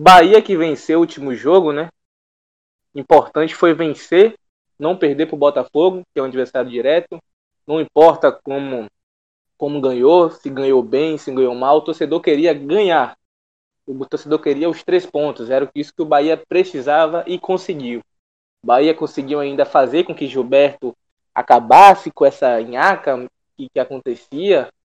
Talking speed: 155 wpm